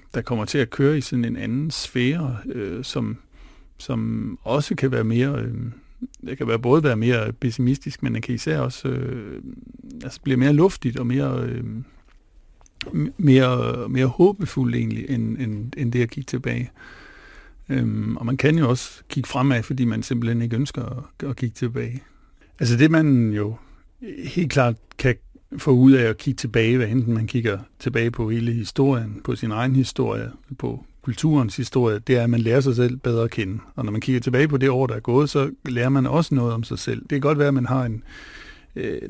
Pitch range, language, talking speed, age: 120-140 Hz, Danish, 205 wpm, 50-69